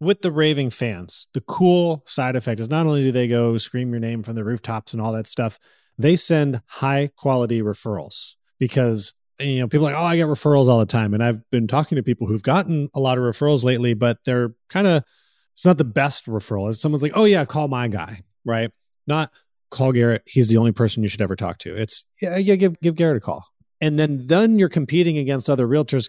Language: English